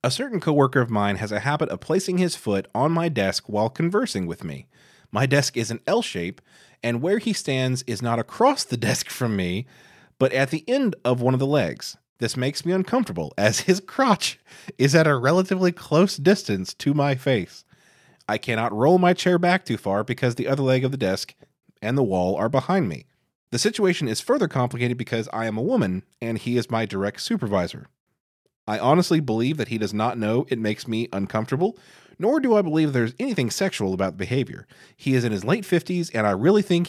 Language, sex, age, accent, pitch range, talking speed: English, male, 30-49, American, 110-170 Hz, 210 wpm